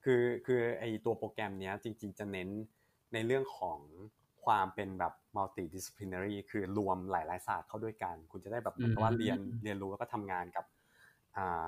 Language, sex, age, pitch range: Thai, male, 20-39, 95-120 Hz